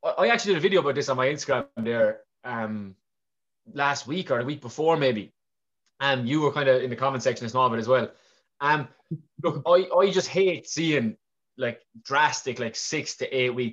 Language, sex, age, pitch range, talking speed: English, male, 20-39, 125-160 Hz, 200 wpm